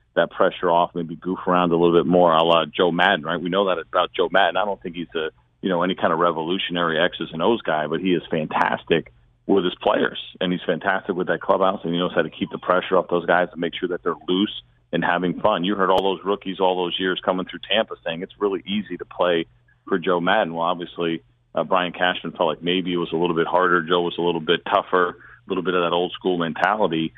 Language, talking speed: English, 260 wpm